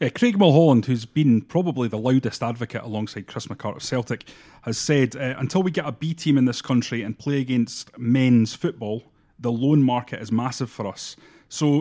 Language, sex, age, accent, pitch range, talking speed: English, male, 30-49, British, 115-145 Hz, 185 wpm